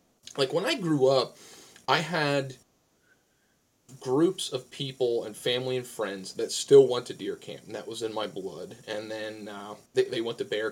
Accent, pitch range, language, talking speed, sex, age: American, 110-150 Hz, English, 190 wpm, male, 30-49